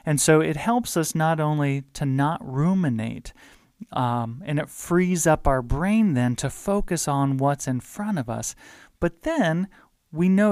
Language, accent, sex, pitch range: English, American, male, 135-175 Hz